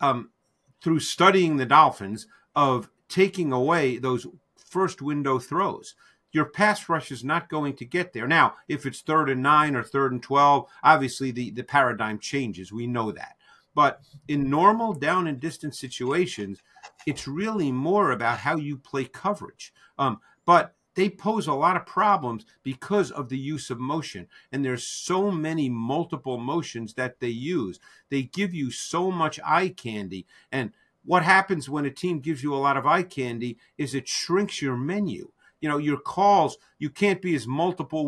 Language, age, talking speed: English, 50-69, 175 wpm